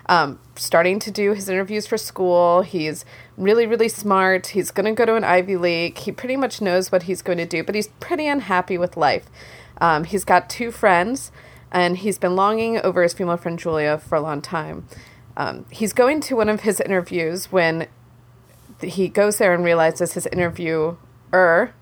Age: 30-49